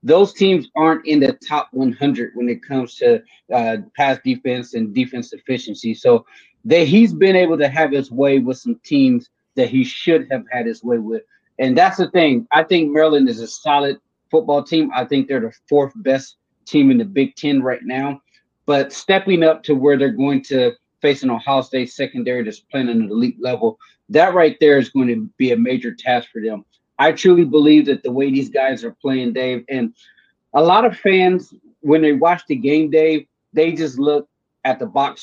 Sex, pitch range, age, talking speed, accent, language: male, 130-175 Hz, 30-49, 205 wpm, American, English